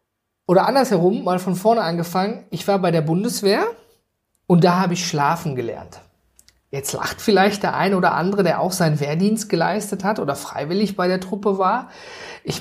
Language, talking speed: German, 175 wpm